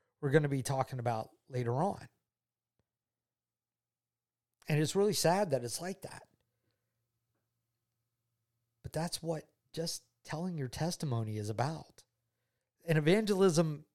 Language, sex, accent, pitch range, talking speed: English, male, American, 115-160 Hz, 110 wpm